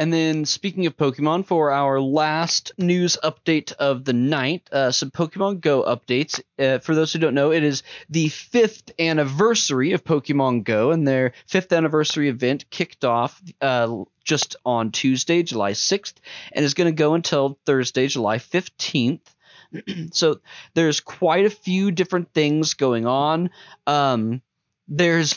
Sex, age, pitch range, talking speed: male, 20-39, 135-170 Hz, 150 wpm